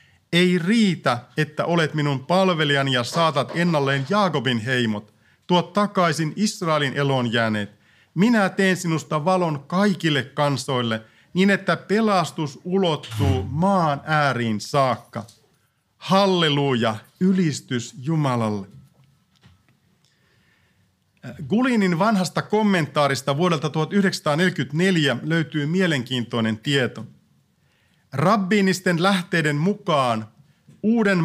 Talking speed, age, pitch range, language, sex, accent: 85 wpm, 50-69, 125-180 Hz, Finnish, male, native